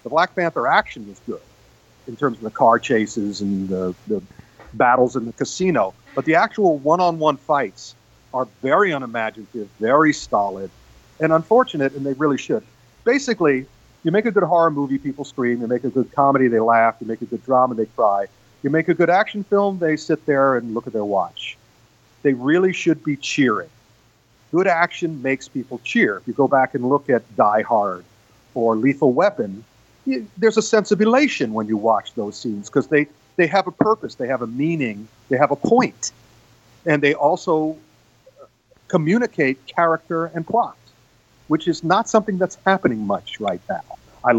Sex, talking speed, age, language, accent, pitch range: male, 185 wpm, 50-69, English, American, 120-175 Hz